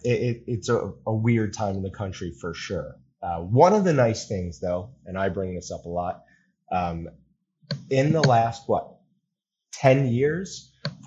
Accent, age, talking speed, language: American, 30-49, 170 wpm, English